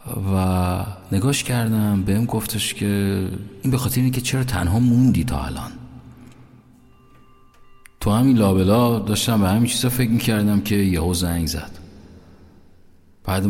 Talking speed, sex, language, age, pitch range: 130 wpm, male, Persian, 50-69, 90-120 Hz